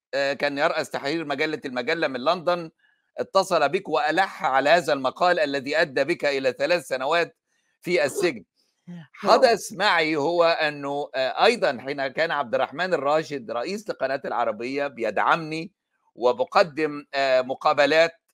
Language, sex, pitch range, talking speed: Arabic, male, 145-185 Hz, 120 wpm